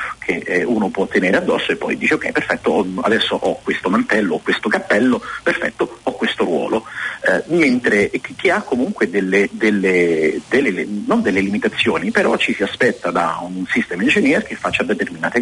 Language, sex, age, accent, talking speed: Italian, male, 40-59, native, 165 wpm